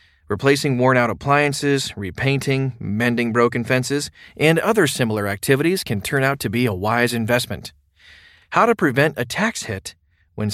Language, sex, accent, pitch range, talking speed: English, male, American, 115-145 Hz, 150 wpm